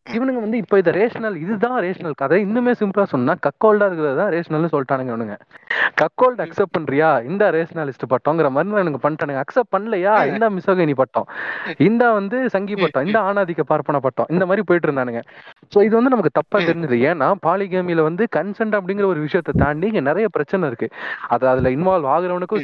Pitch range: 150-200 Hz